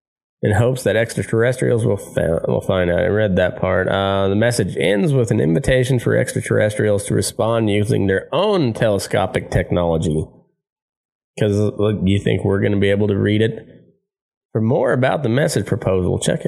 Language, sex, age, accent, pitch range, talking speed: English, male, 30-49, American, 100-135 Hz, 175 wpm